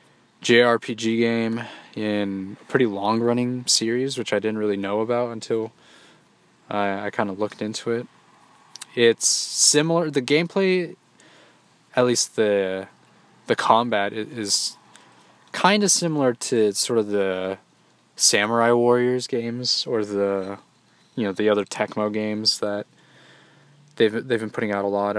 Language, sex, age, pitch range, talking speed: English, male, 20-39, 105-120 Hz, 135 wpm